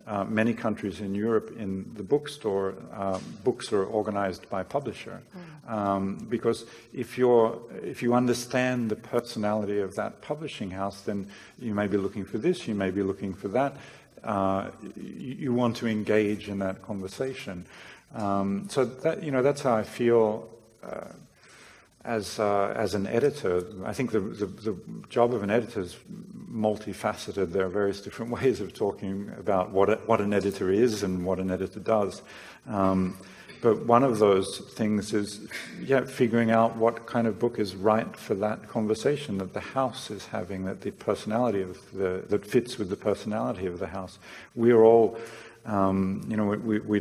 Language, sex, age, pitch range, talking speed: English, male, 70-89, 100-115 Hz, 170 wpm